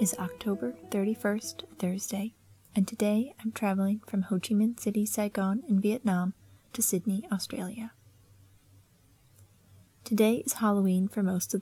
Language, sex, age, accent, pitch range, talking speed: English, female, 30-49, American, 125-210 Hz, 130 wpm